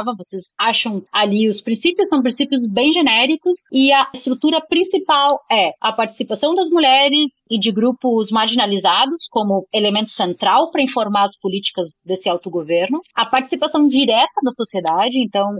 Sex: female